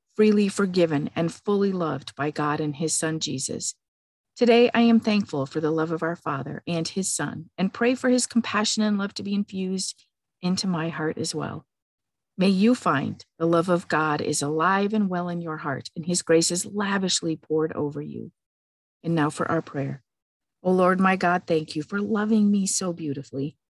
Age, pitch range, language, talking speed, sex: 50-69, 155-195 Hz, English, 195 wpm, female